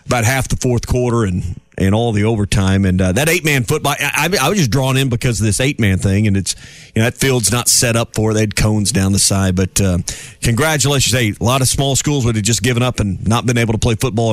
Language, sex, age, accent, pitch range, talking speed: English, male, 40-59, American, 110-145 Hz, 280 wpm